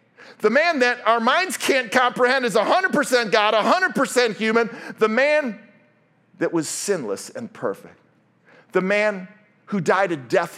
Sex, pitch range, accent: male, 185-275 Hz, American